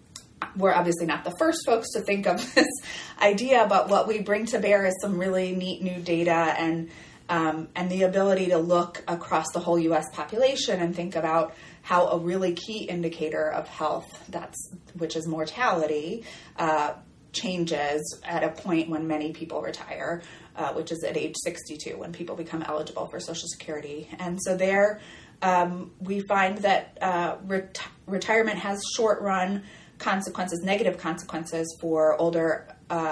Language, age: English, 20-39